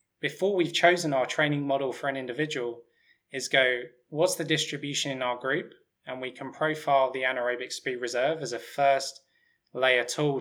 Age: 20-39